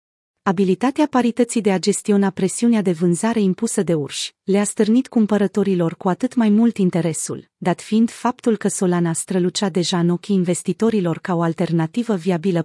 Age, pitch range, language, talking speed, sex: 30-49, 175-225 Hz, Romanian, 155 wpm, female